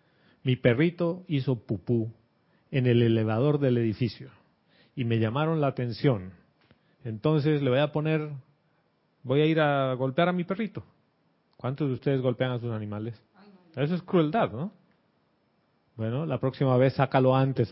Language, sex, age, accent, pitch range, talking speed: Spanish, male, 30-49, Mexican, 115-150 Hz, 150 wpm